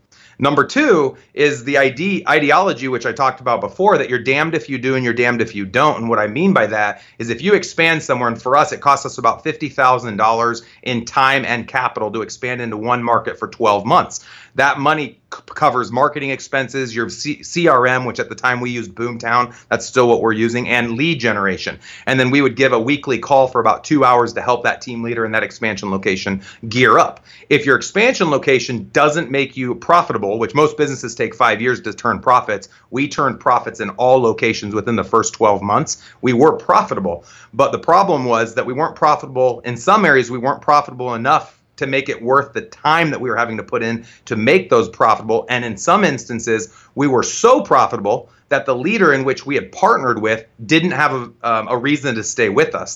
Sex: male